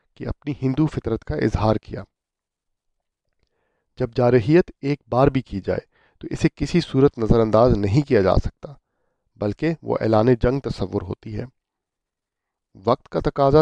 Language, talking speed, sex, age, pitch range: Urdu, 150 wpm, male, 40-59, 105-135 Hz